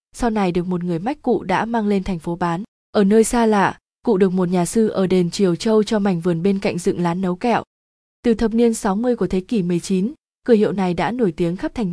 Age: 20-39